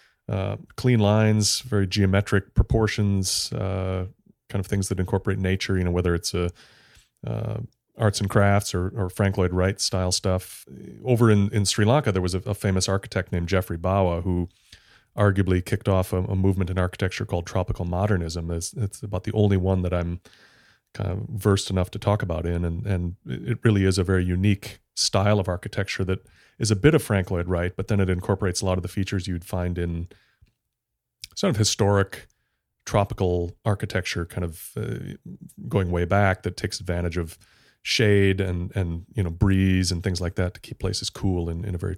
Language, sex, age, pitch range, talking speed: English, male, 30-49, 90-105 Hz, 190 wpm